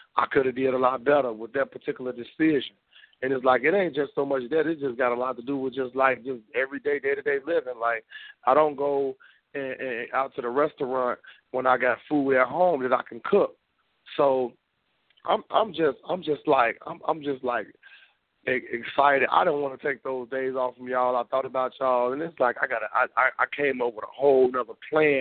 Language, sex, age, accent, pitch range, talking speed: English, male, 40-59, American, 130-160 Hz, 225 wpm